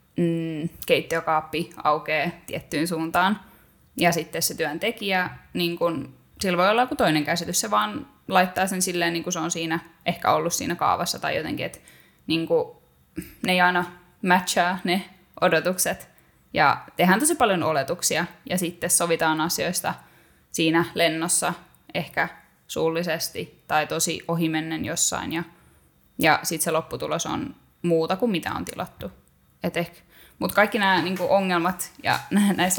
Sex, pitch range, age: female, 160-180 Hz, 10-29